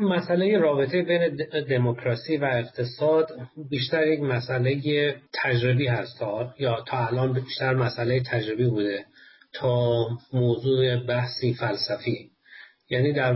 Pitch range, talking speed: 115-135 Hz, 110 wpm